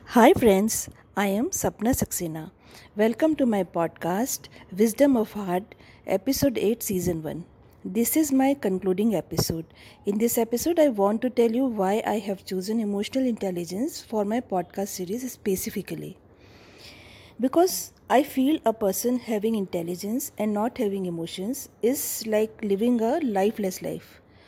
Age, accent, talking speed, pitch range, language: 50-69, native, 140 wpm, 195-245 Hz, Hindi